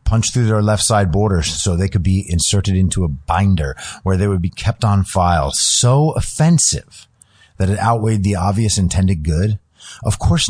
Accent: American